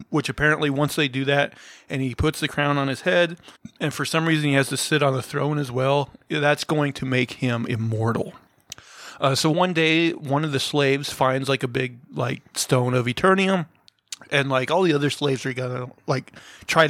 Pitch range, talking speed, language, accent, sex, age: 130-155 Hz, 215 wpm, English, American, male, 30-49